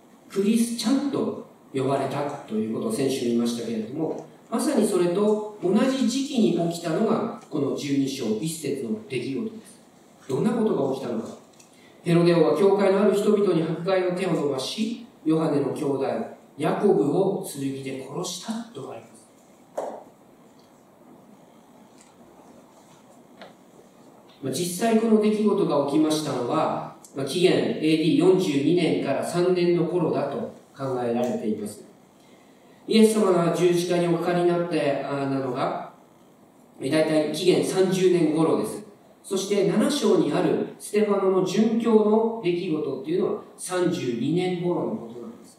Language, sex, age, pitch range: Japanese, male, 40-59, 145-220 Hz